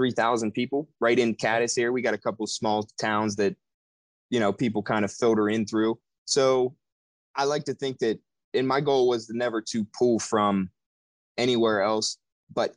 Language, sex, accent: English, male, American